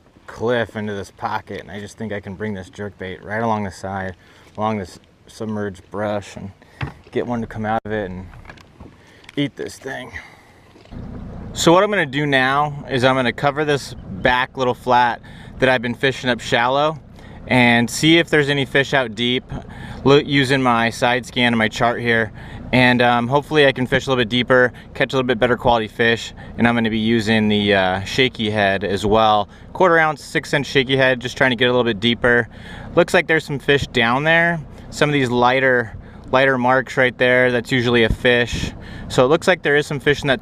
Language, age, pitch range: English, 30-49, 105-130 Hz